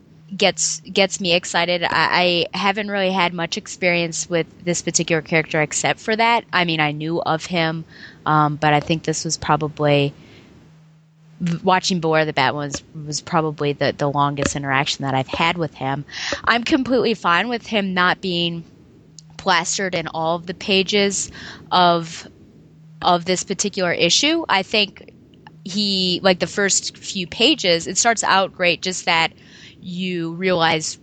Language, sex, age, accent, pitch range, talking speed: English, female, 20-39, American, 155-185 Hz, 155 wpm